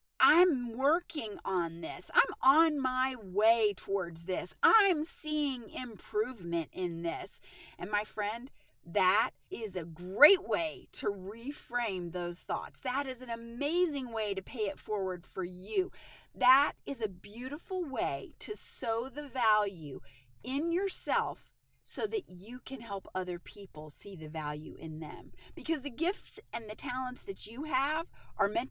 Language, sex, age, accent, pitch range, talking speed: English, female, 40-59, American, 190-300 Hz, 150 wpm